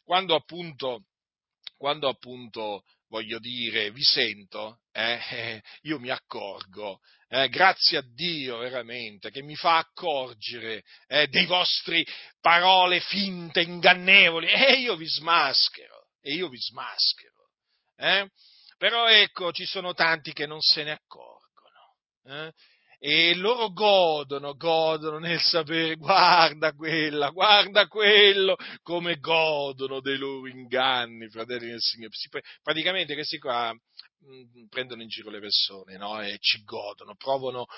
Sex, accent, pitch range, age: male, native, 120-175 Hz, 40-59